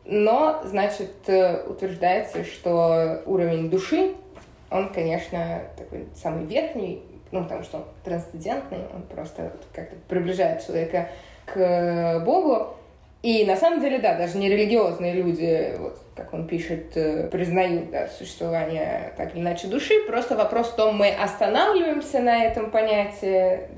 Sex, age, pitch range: female, 20-39, 170-215 Hz